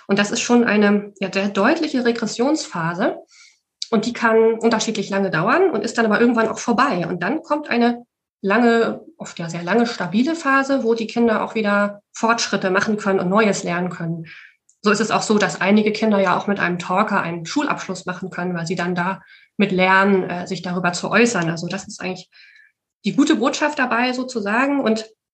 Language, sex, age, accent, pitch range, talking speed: German, female, 30-49, German, 190-230 Hz, 195 wpm